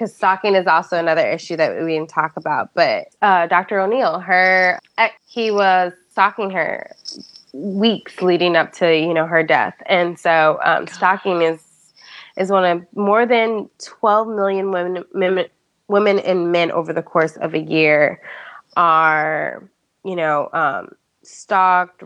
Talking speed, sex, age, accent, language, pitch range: 150 wpm, female, 20-39, American, English, 165-200 Hz